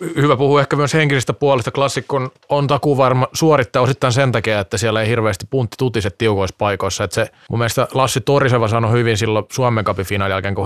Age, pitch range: 20-39, 105-130 Hz